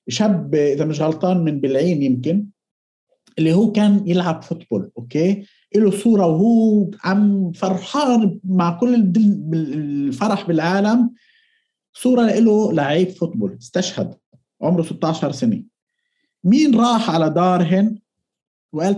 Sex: male